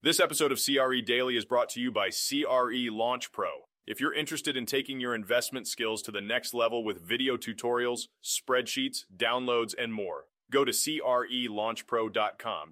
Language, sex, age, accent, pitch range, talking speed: English, male, 30-49, American, 110-125 Hz, 165 wpm